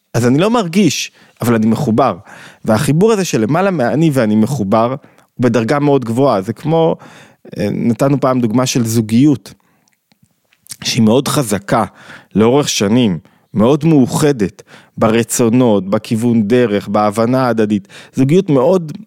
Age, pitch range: 20-39, 115-155 Hz